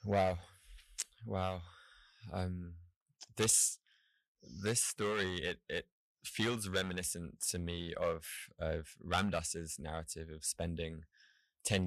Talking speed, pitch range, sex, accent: 95 wpm, 85-95 Hz, male, British